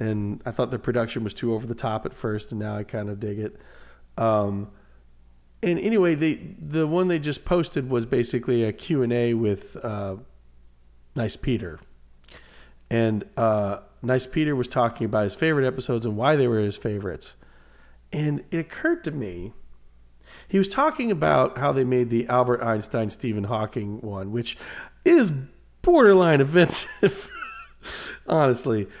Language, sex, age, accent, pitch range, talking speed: English, male, 40-59, American, 110-150 Hz, 160 wpm